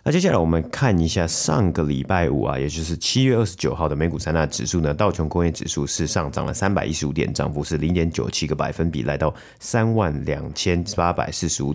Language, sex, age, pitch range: Chinese, male, 30-49, 75-95 Hz